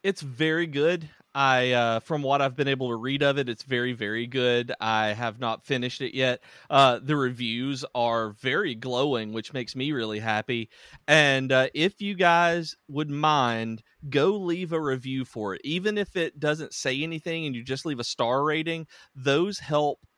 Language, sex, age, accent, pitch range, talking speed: English, male, 30-49, American, 120-145 Hz, 185 wpm